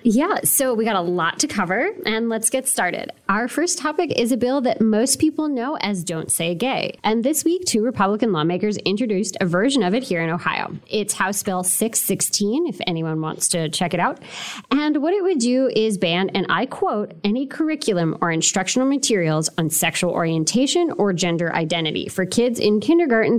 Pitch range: 185-270 Hz